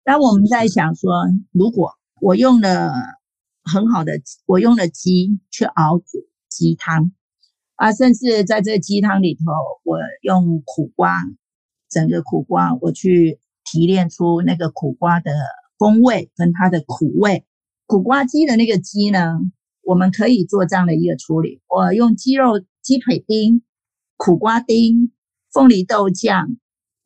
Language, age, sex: Chinese, 50-69, female